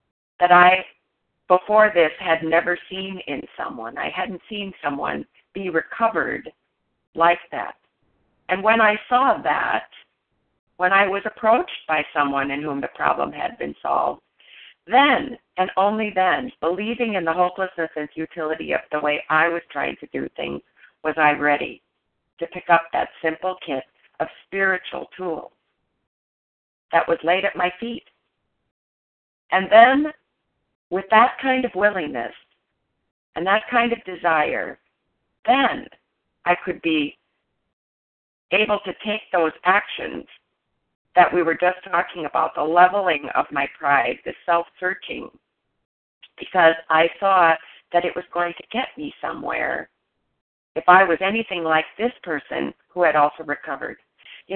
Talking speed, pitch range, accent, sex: 140 wpm, 160-195 Hz, American, female